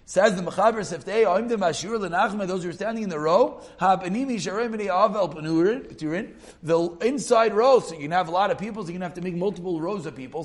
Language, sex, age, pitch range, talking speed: English, male, 40-59, 170-220 Hz, 255 wpm